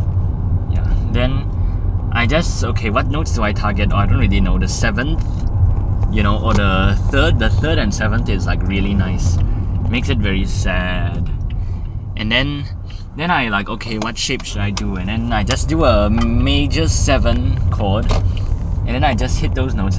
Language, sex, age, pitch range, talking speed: English, male, 20-39, 90-110 Hz, 180 wpm